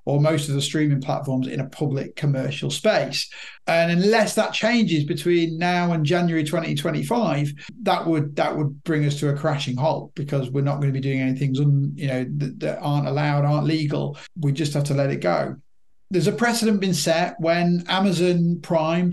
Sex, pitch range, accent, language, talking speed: male, 145-175 Hz, British, English, 190 wpm